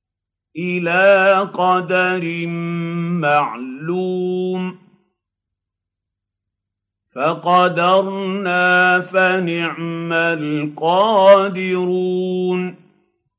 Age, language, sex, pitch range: 50-69, Arabic, male, 165-185 Hz